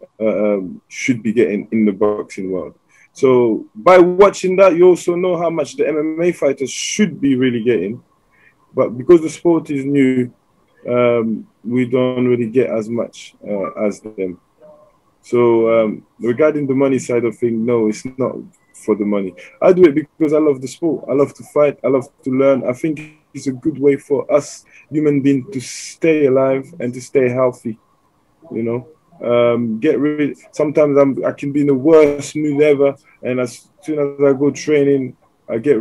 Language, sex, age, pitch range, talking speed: Slovak, male, 20-39, 115-145 Hz, 190 wpm